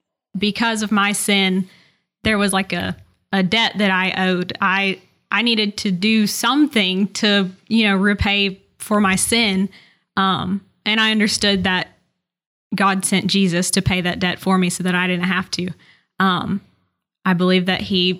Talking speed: 170 wpm